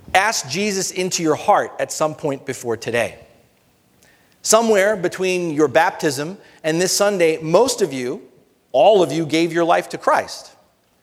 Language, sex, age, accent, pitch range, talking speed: English, male, 40-59, American, 130-185 Hz, 150 wpm